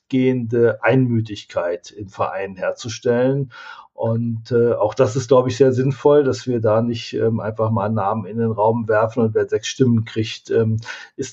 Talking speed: 160 wpm